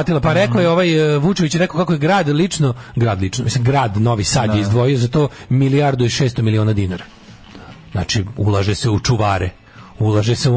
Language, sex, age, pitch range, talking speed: English, male, 40-59, 110-145 Hz, 185 wpm